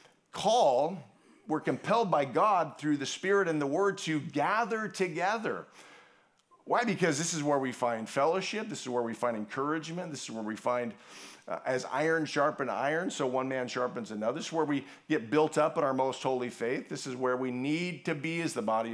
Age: 50-69